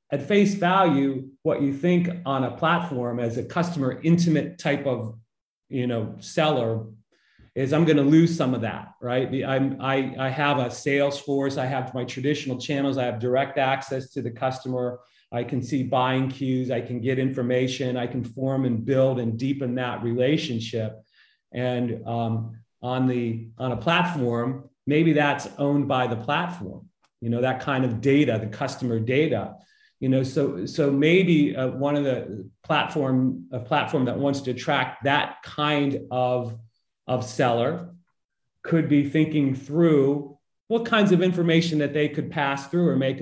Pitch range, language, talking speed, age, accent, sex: 125-150 Hz, English, 160 wpm, 40-59, American, male